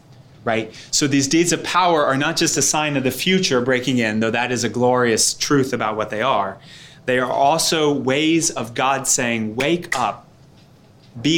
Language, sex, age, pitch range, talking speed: English, male, 30-49, 115-140 Hz, 190 wpm